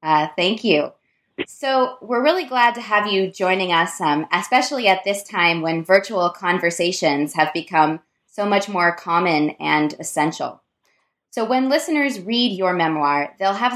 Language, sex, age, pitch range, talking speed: English, female, 20-39, 160-200 Hz, 155 wpm